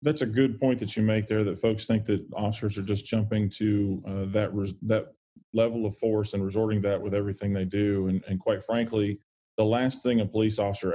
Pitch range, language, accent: 100-110 Hz, English, American